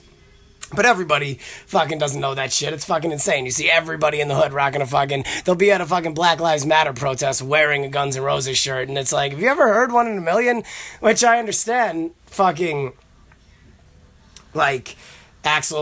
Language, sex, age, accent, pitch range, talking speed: English, male, 30-49, American, 130-175 Hz, 195 wpm